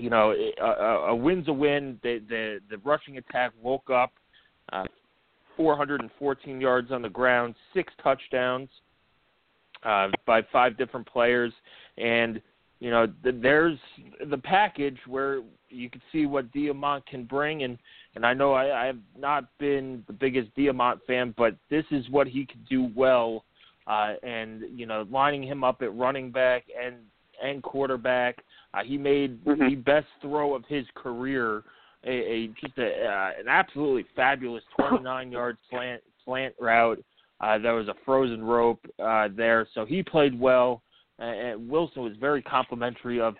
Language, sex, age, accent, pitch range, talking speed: English, male, 30-49, American, 120-140 Hz, 160 wpm